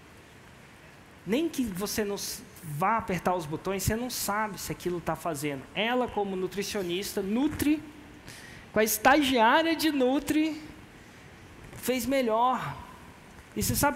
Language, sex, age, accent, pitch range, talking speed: Portuguese, male, 20-39, Brazilian, 180-240 Hz, 125 wpm